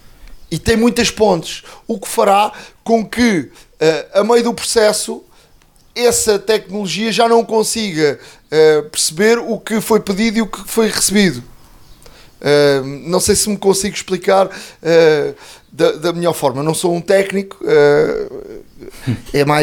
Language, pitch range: Portuguese, 160-220 Hz